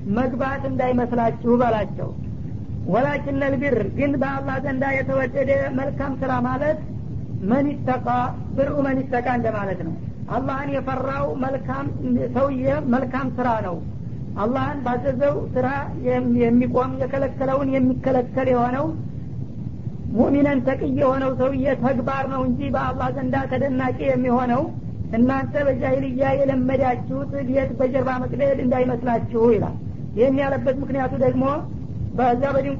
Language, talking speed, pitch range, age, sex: Amharic, 105 wpm, 240-270 Hz, 50-69, female